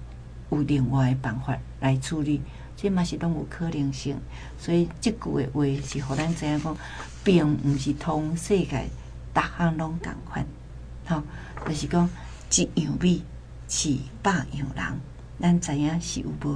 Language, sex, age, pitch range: Chinese, female, 60-79, 130-175 Hz